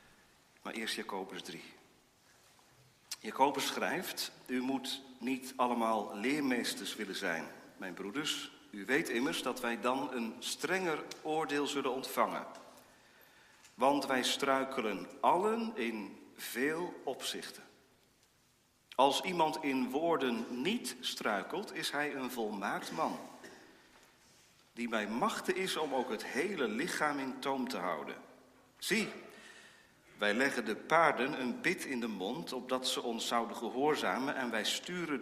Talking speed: 130 wpm